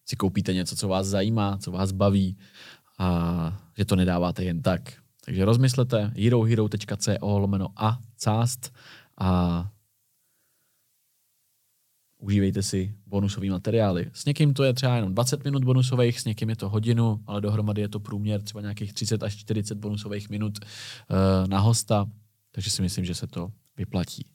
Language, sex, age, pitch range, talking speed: Czech, male, 20-39, 100-130 Hz, 150 wpm